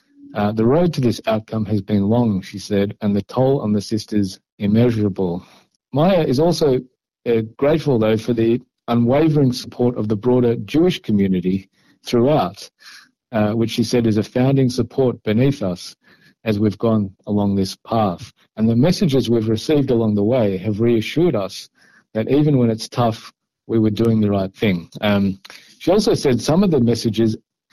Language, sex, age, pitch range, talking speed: Hebrew, male, 50-69, 105-130 Hz, 175 wpm